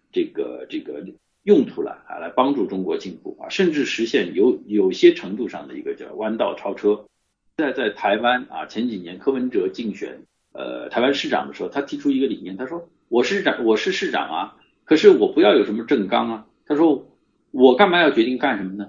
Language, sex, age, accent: Chinese, male, 50-69, native